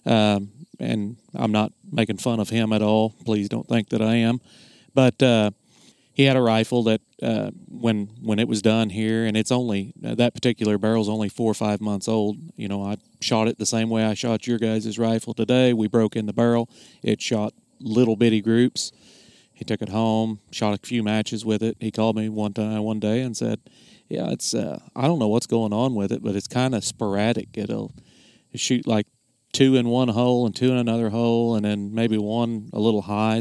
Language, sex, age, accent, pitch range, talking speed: English, male, 30-49, American, 110-120 Hz, 215 wpm